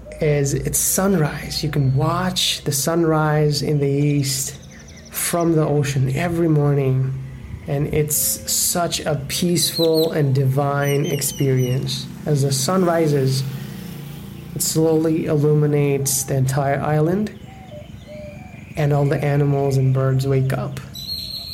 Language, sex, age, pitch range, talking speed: English, male, 20-39, 135-165 Hz, 115 wpm